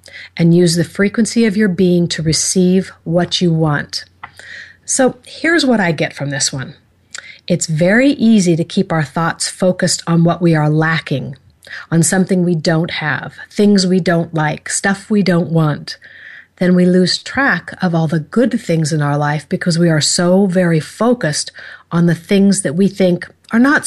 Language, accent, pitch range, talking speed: English, American, 160-200 Hz, 180 wpm